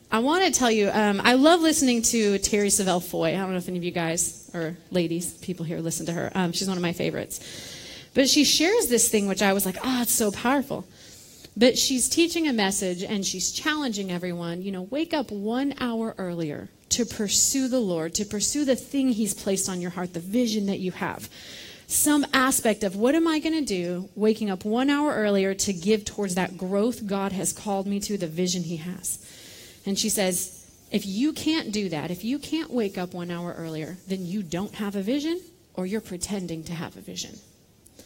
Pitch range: 185-250 Hz